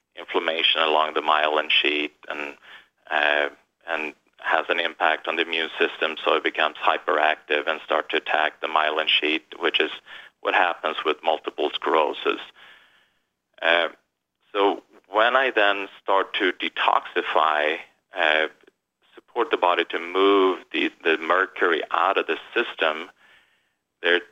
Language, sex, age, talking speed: English, male, 30-49, 135 wpm